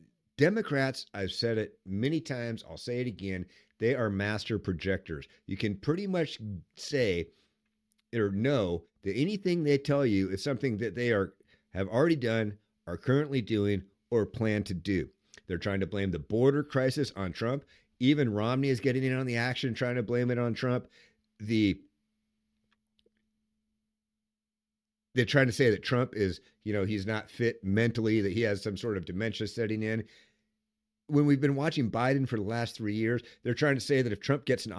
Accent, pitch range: American, 105-145 Hz